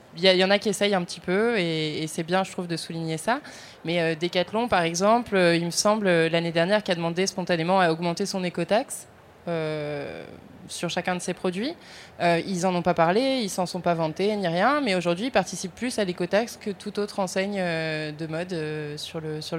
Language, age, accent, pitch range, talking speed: French, 20-39, French, 175-205 Hz, 200 wpm